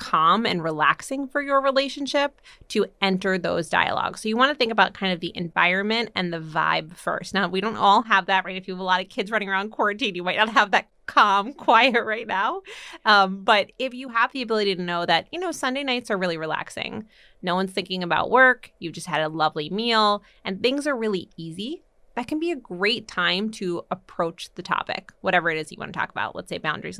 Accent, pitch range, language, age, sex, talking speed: American, 185-255 Hz, English, 20-39, female, 230 wpm